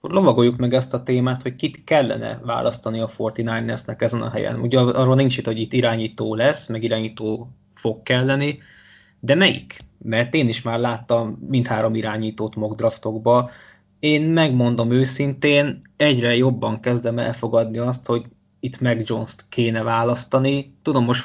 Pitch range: 115-140 Hz